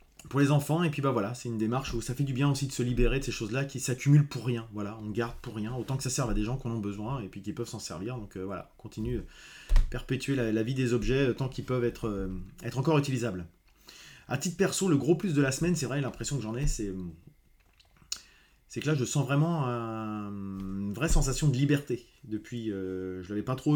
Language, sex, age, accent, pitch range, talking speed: French, male, 20-39, French, 110-140 Hz, 260 wpm